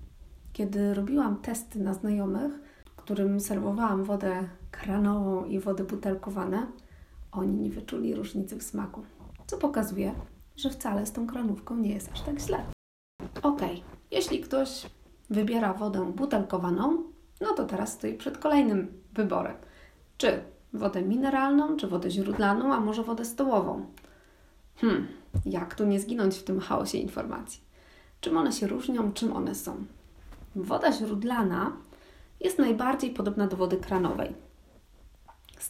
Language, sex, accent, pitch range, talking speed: Polish, female, native, 195-265 Hz, 130 wpm